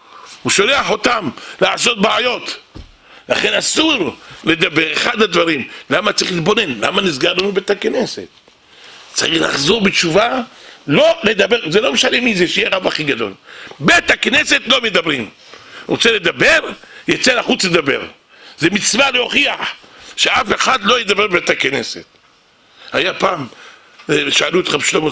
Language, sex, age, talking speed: English, male, 60-79, 125 wpm